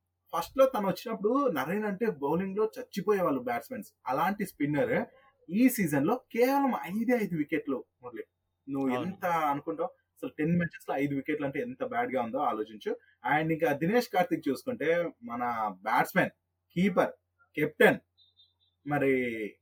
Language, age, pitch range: Telugu, 20-39, 135-215 Hz